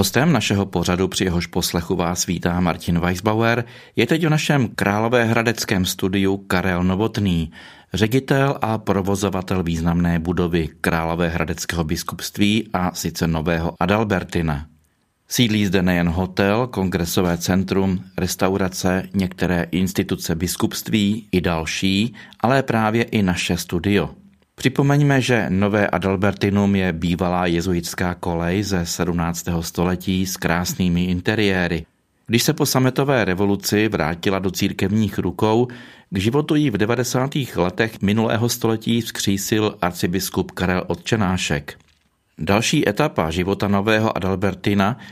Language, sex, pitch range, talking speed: Czech, male, 90-110 Hz, 115 wpm